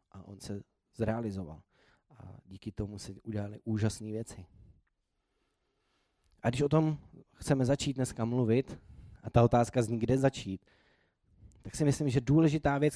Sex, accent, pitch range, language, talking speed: male, native, 90-115 Hz, Czech, 145 wpm